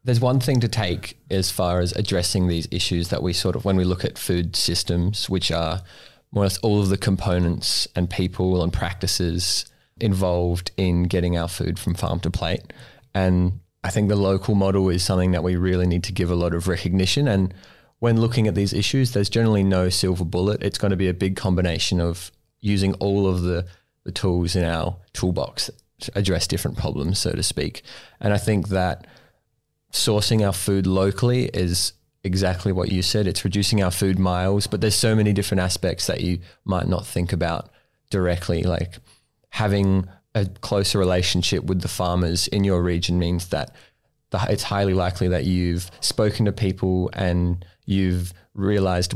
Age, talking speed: 20-39, 180 wpm